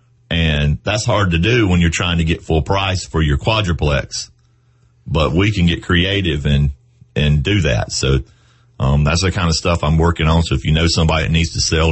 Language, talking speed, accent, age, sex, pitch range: English, 215 wpm, American, 40-59, male, 70-90 Hz